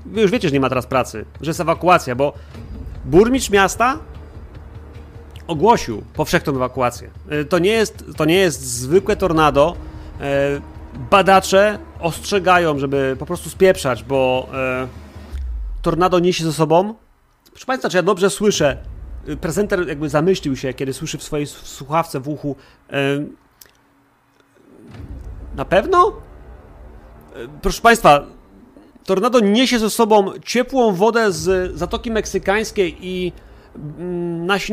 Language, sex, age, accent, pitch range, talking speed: Polish, male, 30-49, native, 135-200 Hz, 115 wpm